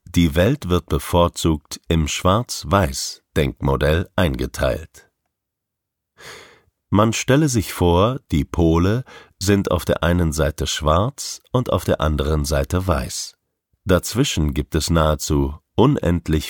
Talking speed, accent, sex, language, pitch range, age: 110 wpm, German, male, German, 75-100 Hz, 50-69